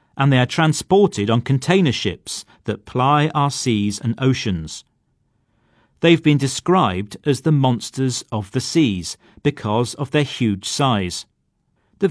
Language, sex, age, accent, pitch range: Chinese, male, 40-59, British, 110-150 Hz